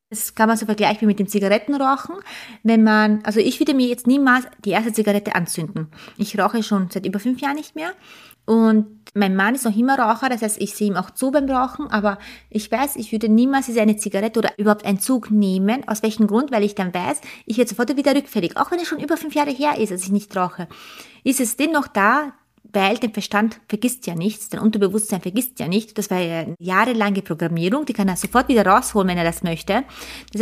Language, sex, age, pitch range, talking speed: German, female, 20-39, 205-255 Hz, 230 wpm